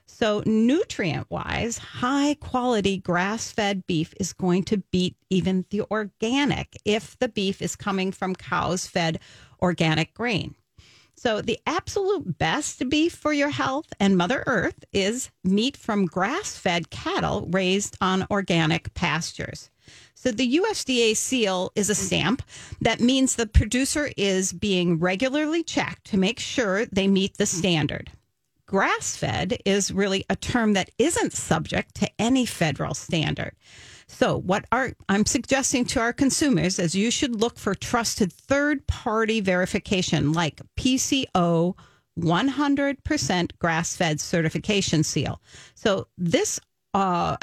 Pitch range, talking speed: 175-240 Hz, 125 wpm